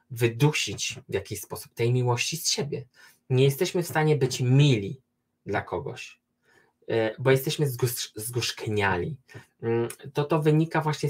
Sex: male